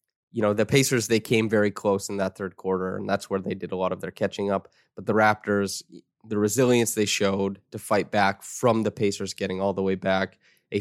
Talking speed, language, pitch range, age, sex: 235 wpm, English, 100-115 Hz, 20-39, male